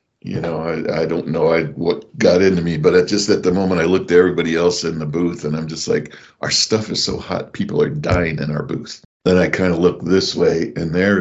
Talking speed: 250 wpm